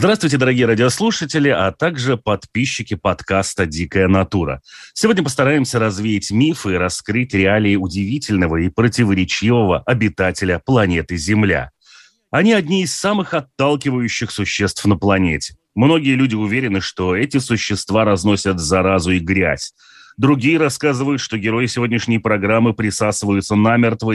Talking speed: 120 wpm